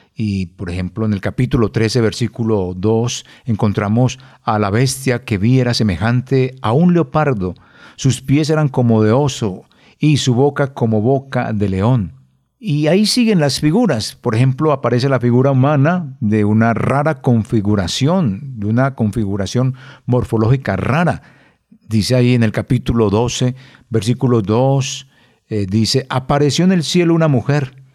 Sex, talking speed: male, 145 wpm